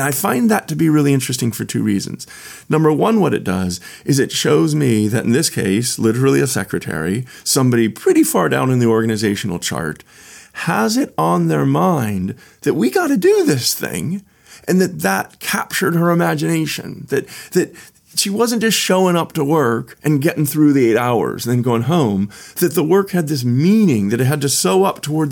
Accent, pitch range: American, 120-180 Hz